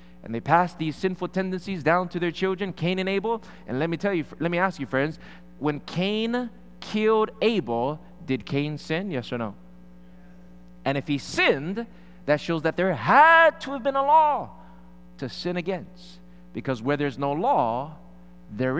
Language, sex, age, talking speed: English, male, 20-39, 180 wpm